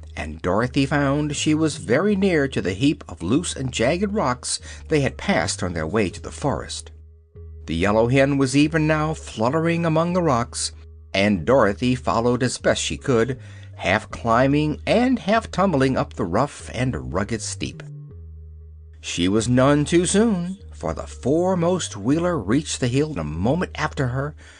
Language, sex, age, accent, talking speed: English, male, 60-79, American, 165 wpm